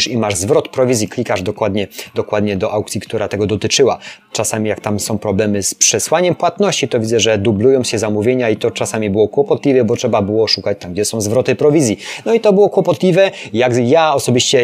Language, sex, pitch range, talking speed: Polish, male, 110-140 Hz, 195 wpm